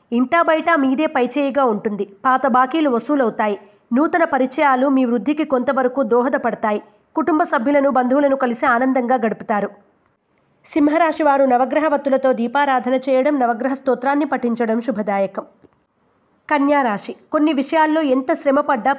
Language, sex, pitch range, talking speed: Telugu, female, 235-290 Hz, 105 wpm